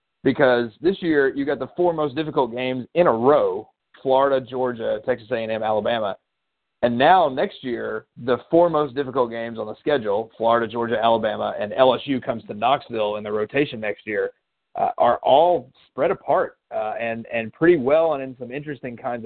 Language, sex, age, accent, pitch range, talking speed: English, male, 40-59, American, 115-145 Hz, 180 wpm